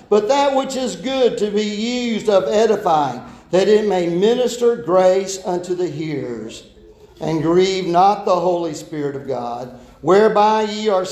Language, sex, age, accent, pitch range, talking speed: English, male, 50-69, American, 170-220 Hz, 155 wpm